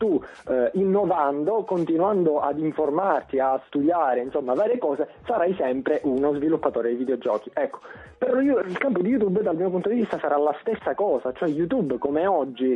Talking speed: 165 wpm